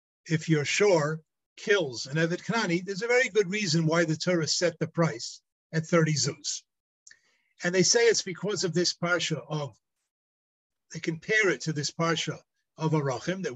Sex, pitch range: male, 155-190 Hz